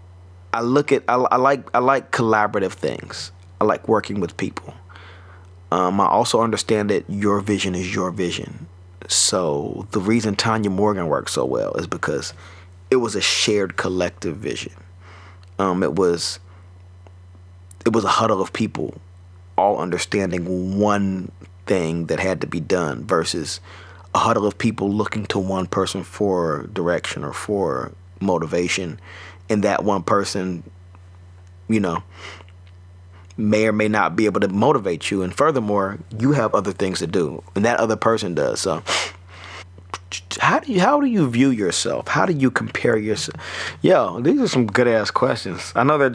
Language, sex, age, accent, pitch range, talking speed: English, male, 30-49, American, 90-110 Hz, 165 wpm